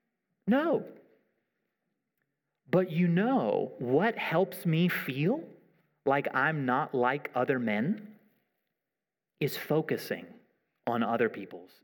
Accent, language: American, English